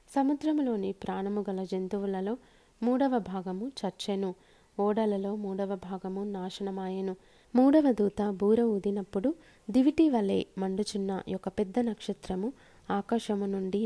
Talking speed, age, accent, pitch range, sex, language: 100 wpm, 20-39, native, 195-225 Hz, female, Telugu